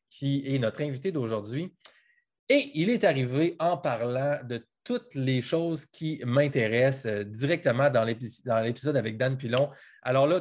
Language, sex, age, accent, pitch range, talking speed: French, male, 20-39, Canadian, 125-160 Hz, 150 wpm